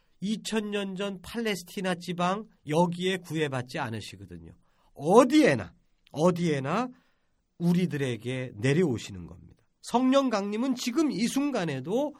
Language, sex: Korean, male